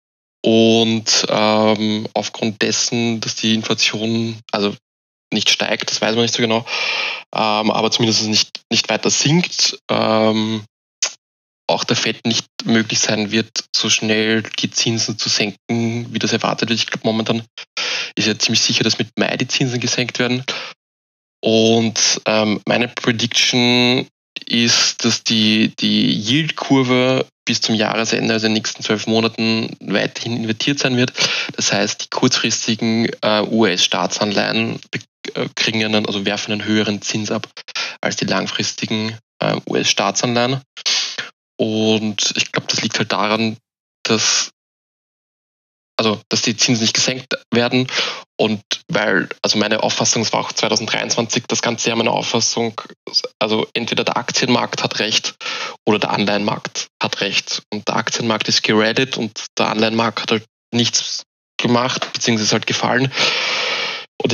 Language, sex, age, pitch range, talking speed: German, male, 20-39, 110-120 Hz, 145 wpm